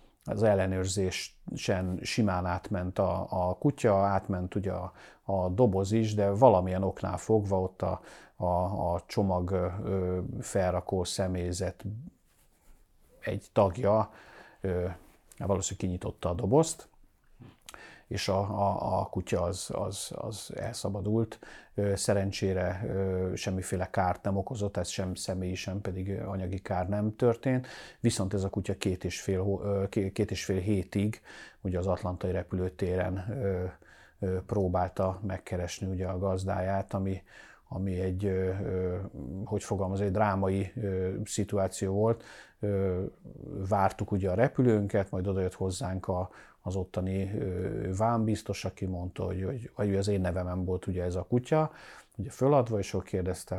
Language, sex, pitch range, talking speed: Hungarian, male, 95-105 Hz, 120 wpm